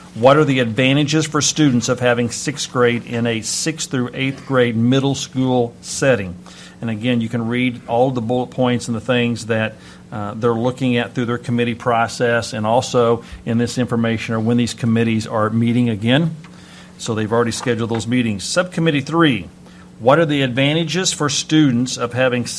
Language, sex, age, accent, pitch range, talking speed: English, male, 50-69, American, 110-135 Hz, 180 wpm